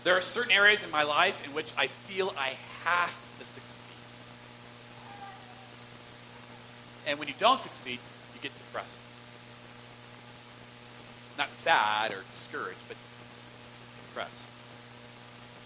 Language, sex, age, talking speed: English, male, 40-59, 110 wpm